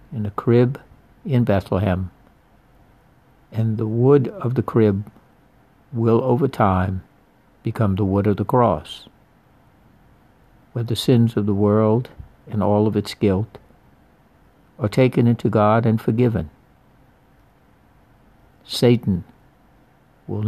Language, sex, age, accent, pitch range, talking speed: English, male, 60-79, American, 105-125 Hz, 115 wpm